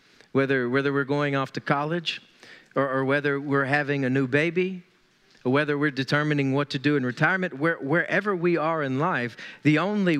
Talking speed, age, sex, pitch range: 190 wpm, 40-59, male, 140-195 Hz